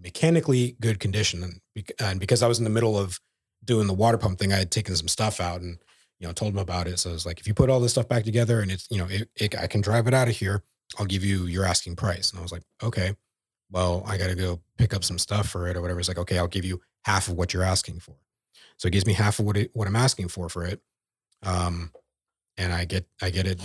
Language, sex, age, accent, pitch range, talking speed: English, male, 30-49, American, 90-110 Hz, 275 wpm